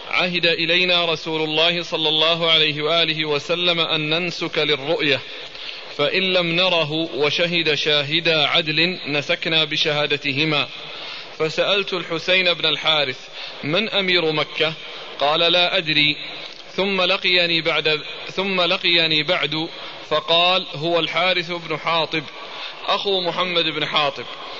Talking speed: 105 wpm